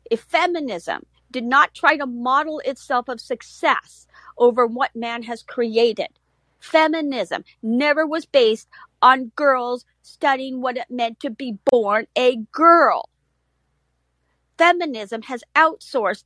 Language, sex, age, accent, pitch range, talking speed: English, female, 50-69, American, 250-320 Hz, 120 wpm